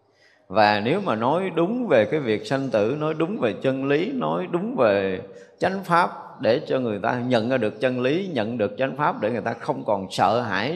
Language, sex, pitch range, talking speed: Vietnamese, male, 105-135 Hz, 225 wpm